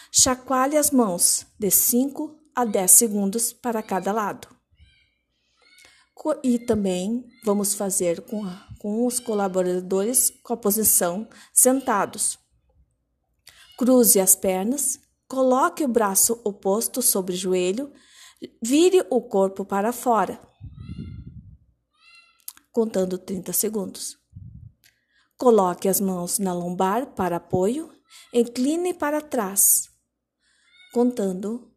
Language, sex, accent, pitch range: Portuguese, female, Brazilian, 195-255 Hz